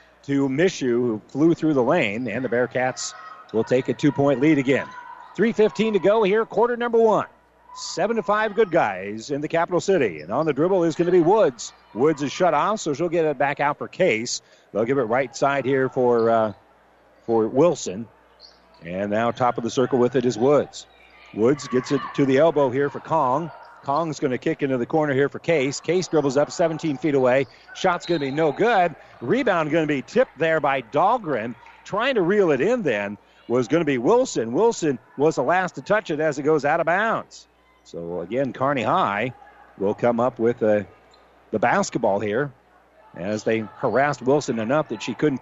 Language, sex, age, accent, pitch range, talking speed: English, male, 40-59, American, 125-170 Hz, 205 wpm